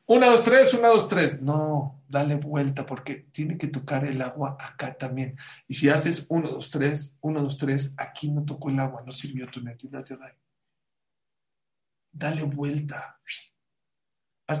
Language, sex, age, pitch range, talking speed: English, male, 50-69, 135-180 Hz, 155 wpm